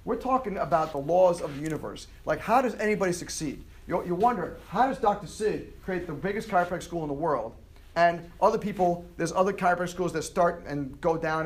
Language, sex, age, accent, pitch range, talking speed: English, male, 40-59, American, 140-205 Hz, 205 wpm